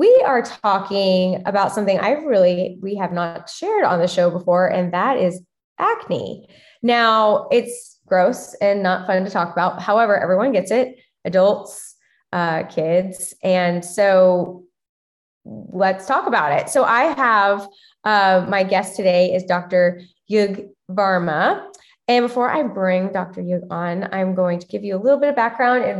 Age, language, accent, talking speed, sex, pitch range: 20-39, English, American, 160 wpm, female, 185-240 Hz